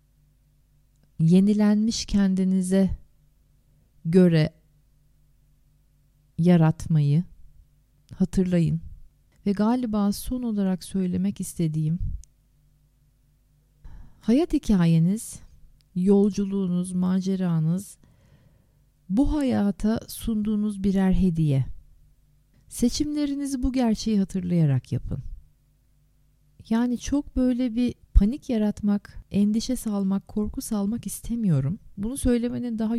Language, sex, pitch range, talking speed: Turkish, female, 145-220 Hz, 70 wpm